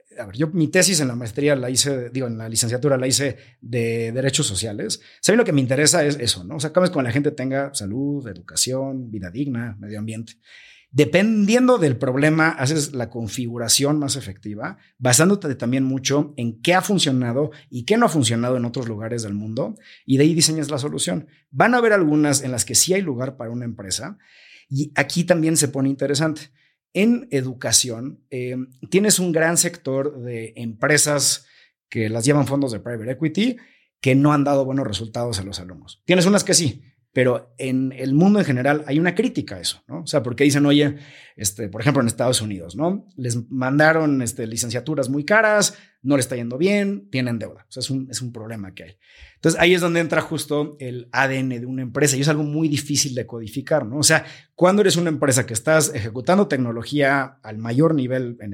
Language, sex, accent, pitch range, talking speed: Spanish, male, Mexican, 120-155 Hz, 205 wpm